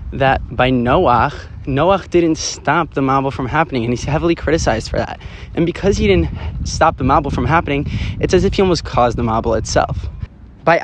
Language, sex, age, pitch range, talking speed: English, male, 20-39, 115-150 Hz, 195 wpm